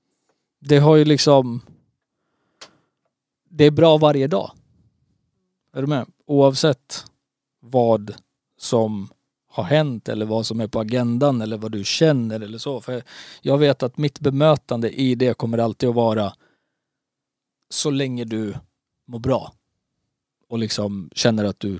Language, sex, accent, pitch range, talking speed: Swedish, male, native, 115-145 Hz, 140 wpm